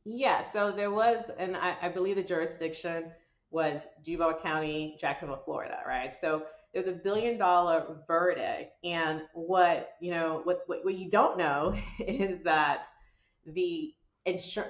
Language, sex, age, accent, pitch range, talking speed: English, female, 30-49, American, 160-190 Hz, 145 wpm